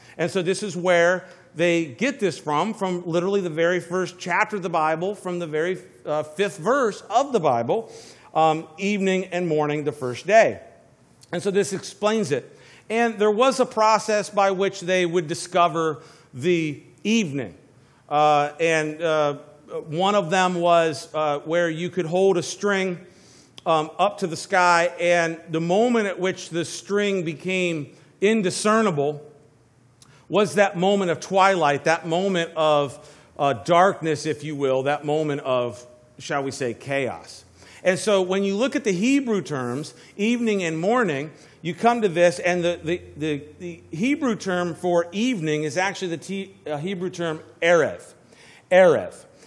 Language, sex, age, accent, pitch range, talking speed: English, male, 50-69, American, 155-195 Hz, 160 wpm